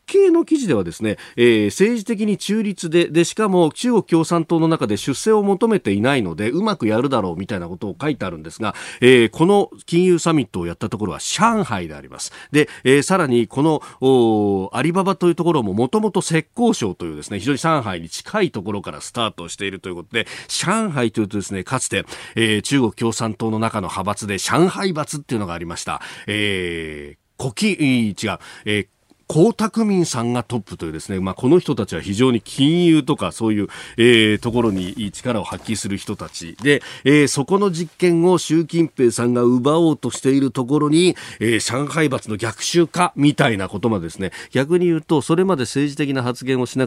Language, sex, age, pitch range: Japanese, male, 40-59, 105-165 Hz